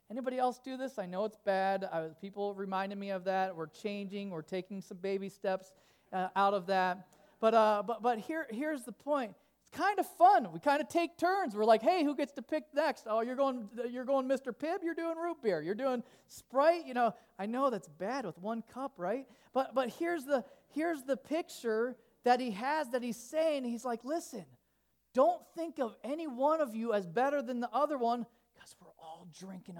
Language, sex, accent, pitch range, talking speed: English, male, American, 200-270 Hz, 215 wpm